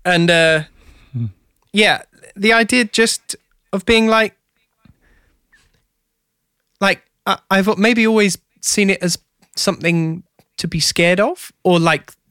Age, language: 20-39, English